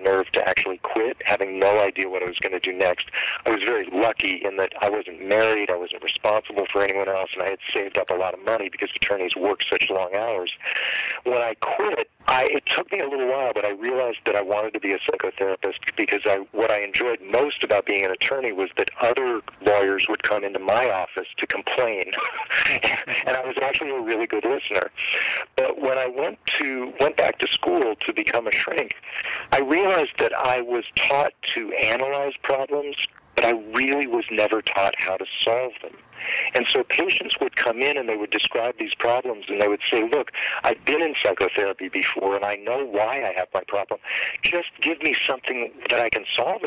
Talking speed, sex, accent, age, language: 210 wpm, male, American, 50-69, English